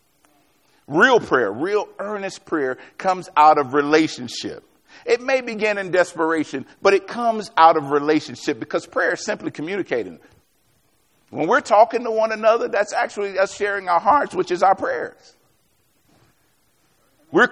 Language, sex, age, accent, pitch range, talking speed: English, male, 50-69, American, 135-200 Hz, 145 wpm